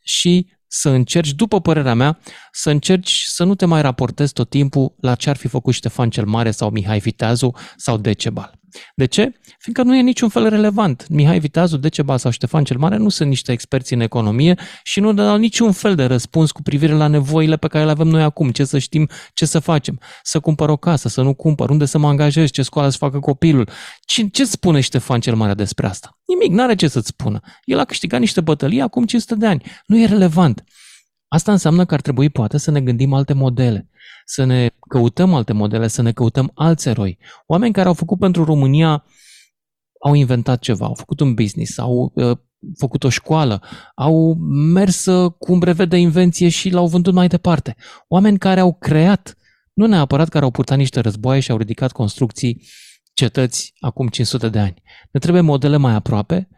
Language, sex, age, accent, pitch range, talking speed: Romanian, male, 30-49, native, 125-175 Hz, 200 wpm